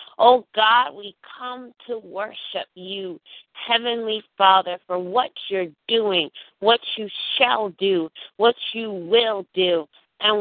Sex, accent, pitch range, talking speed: female, American, 180-230 Hz, 125 wpm